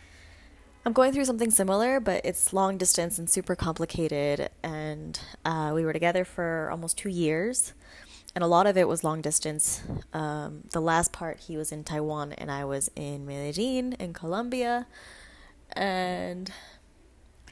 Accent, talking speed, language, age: American, 145 wpm, English, 10-29